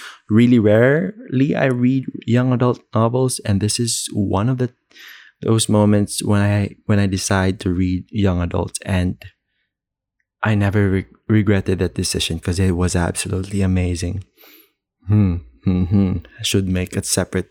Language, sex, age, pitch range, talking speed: English, male, 20-39, 95-115 Hz, 150 wpm